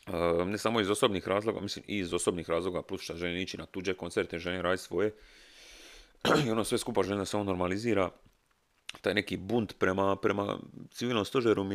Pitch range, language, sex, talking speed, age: 90-100 Hz, Croatian, male, 185 wpm, 30-49